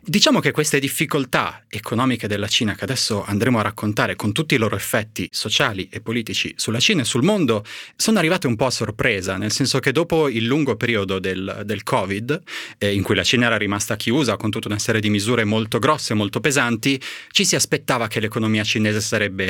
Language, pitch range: Italian, 105-135 Hz